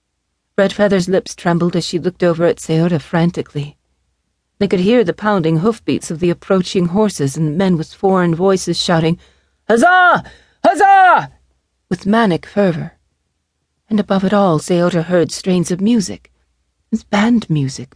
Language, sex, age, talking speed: English, female, 40-59, 150 wpm